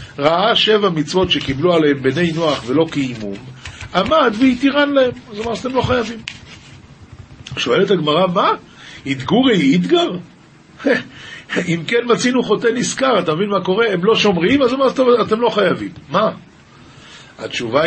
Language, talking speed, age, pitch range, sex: Hebrew, 140 wpm, 50-69, 140-210 Hz, male